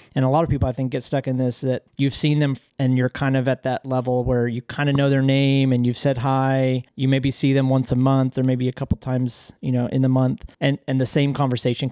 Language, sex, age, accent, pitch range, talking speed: English, male, 40-59, American, 125-140 Hz, 275 wpm